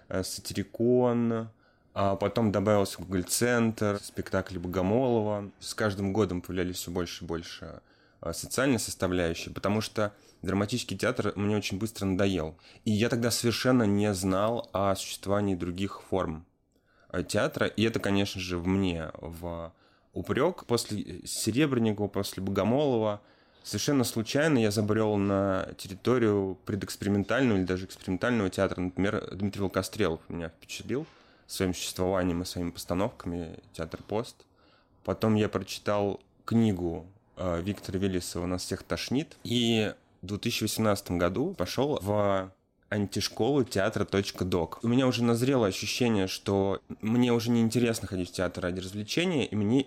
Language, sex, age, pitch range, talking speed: Russian, male, 20-39, 95-110 Hz, 130 wpm